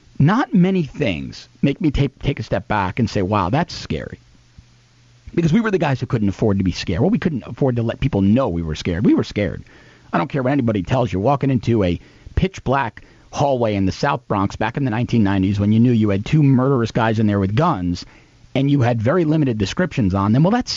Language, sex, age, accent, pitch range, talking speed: English, male, 40-59, American, 105-155 Hz, 240 wpm